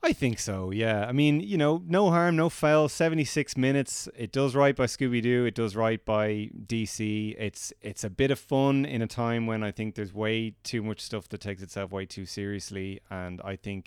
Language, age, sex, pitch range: English, 30-49, male, 95-120 Hz